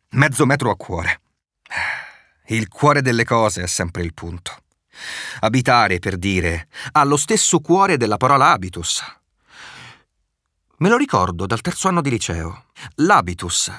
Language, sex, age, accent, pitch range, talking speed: Italian, male, 40-59, native, 90-145 Hz, 135 wpm